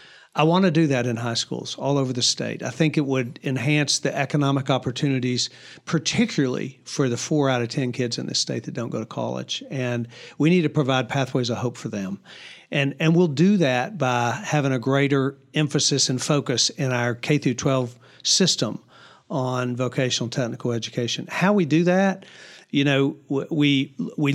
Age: 50-69